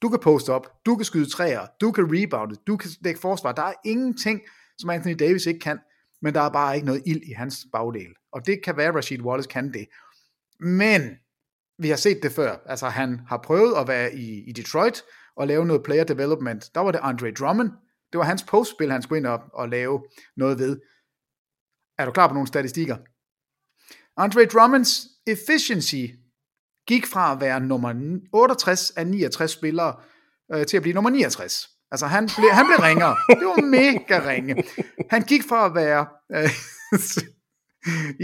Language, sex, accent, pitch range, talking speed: English, male, Danish, 130-195 Hz, 185 wpm